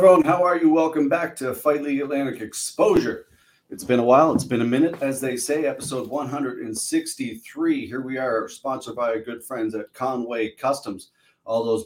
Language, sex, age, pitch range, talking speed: English, male, 40-59, 100-130 Hz, 180 wpm